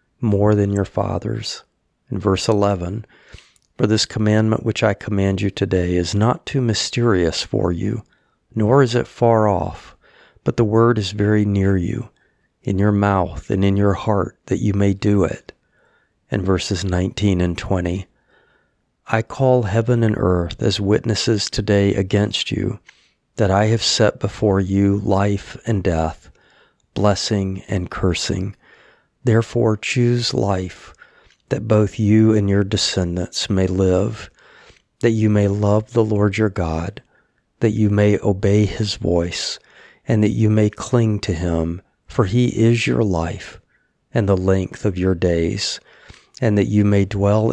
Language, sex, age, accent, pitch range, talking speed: English, male, 40-59, American, 95-110 Hz, 150 wpm